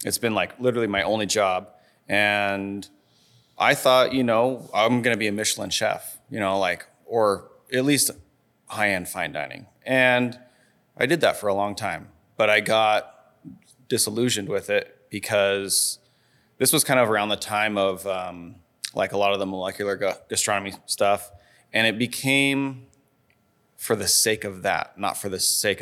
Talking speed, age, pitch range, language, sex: 165 wpm, 30-49, 100-125 Hz, English, male